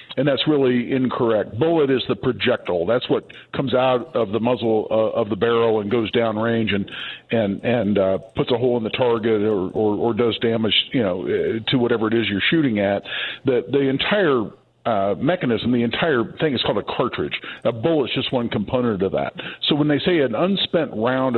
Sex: male